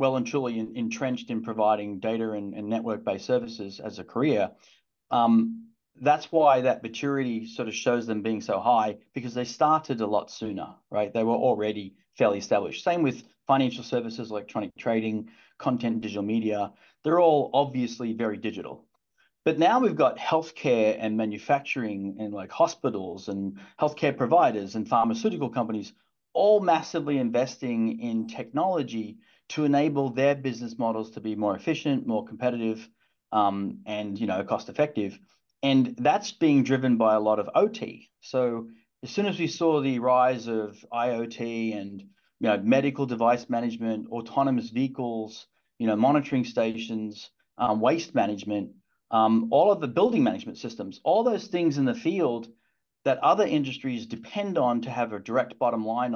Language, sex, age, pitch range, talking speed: English, male, 30-49, 110-135 Hz, 160 wpm